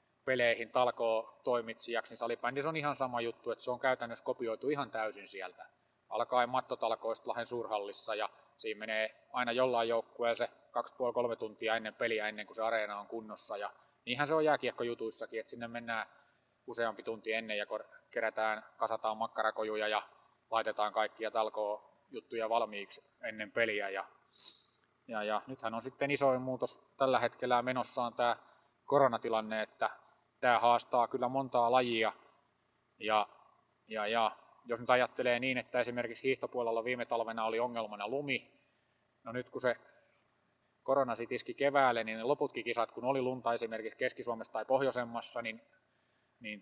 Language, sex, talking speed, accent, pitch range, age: Finnish, male, 150 wpm, native, 110-125 Hz, 20-39